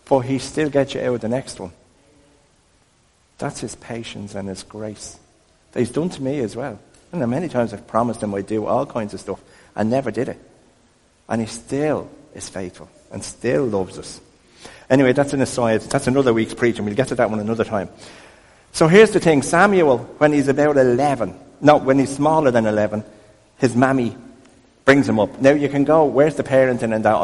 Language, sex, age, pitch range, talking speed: English, male, 50-69, 105-135 Hz, 205 wpm